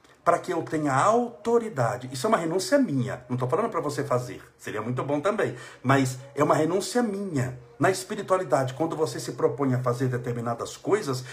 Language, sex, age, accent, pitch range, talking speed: Portuguese, male, 60-79, Brazilian, 130-200 Hz, 185 wpm